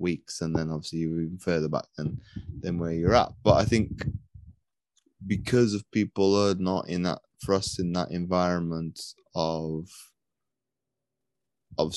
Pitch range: 85-100 Hz